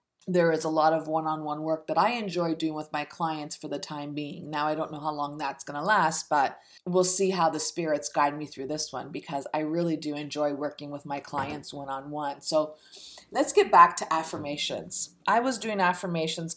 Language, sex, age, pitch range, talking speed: English, female, 30-49, 150-185 Hz, 215 wpm